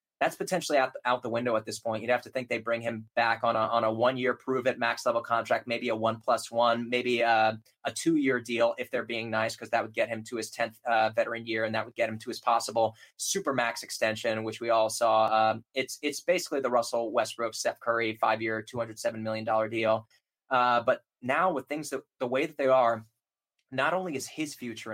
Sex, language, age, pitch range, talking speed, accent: male, English, 20-39, 115-135 Hz, 225 wpm, American